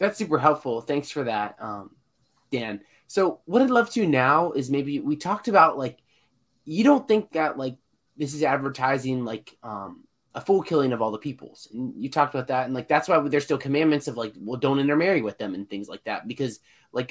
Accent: American